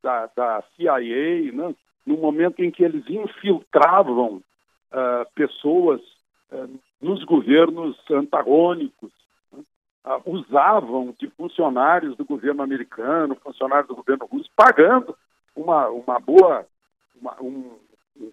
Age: 60-79